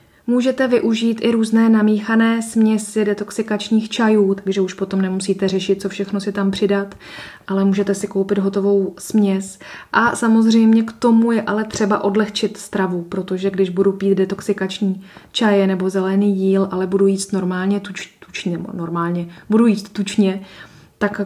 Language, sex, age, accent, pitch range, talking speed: Czech, female, 20-39, native, 190-215 Hz, 145 wpm